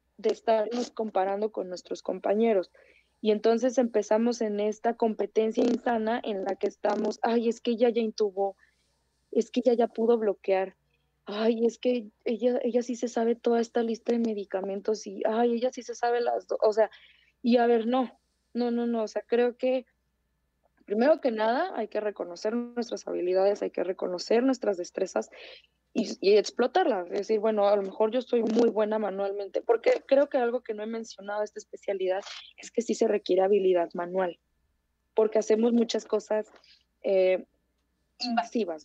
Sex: female